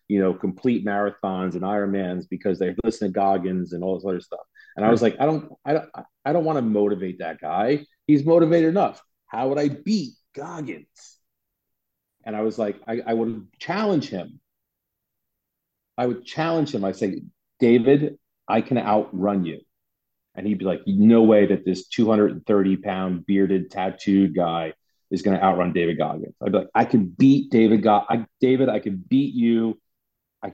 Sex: male